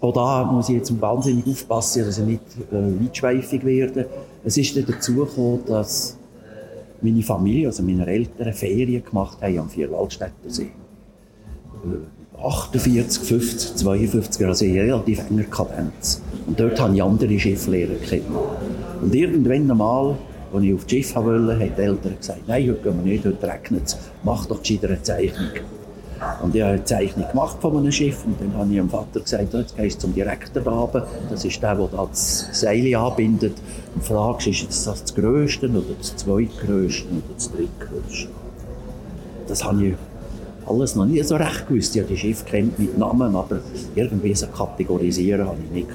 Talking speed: 175 wpm